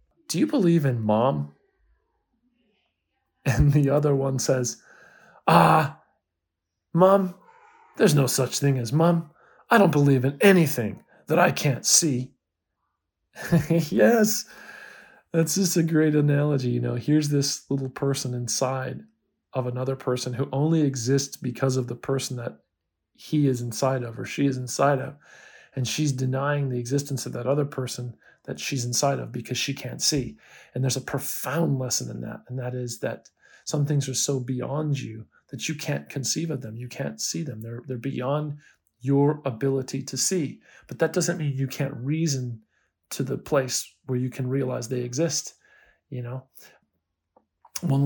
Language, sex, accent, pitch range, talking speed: English, male, American, 125-150 Hz, 160 wpm